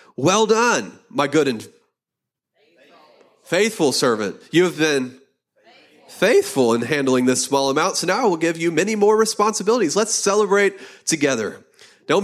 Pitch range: 155-200 Hz